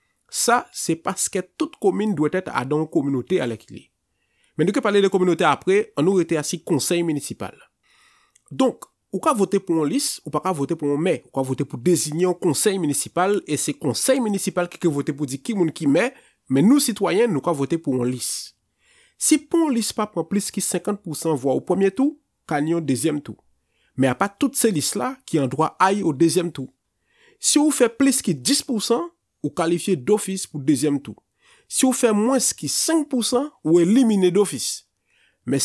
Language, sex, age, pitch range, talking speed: French, male, 30-49, 155-225 Hz, 205 wpm